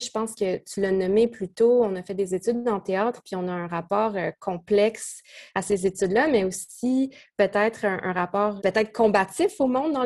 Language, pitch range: French, 190-225 Hz